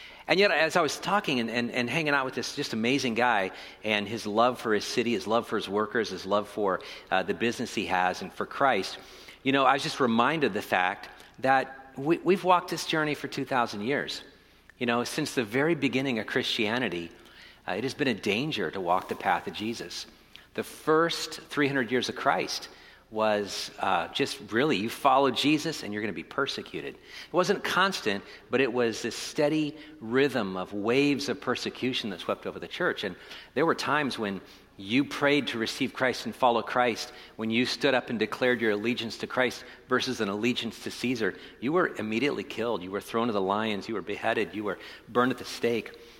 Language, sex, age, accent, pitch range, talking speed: English, male, 50-69, American, 110-140 Hz, 205 wpm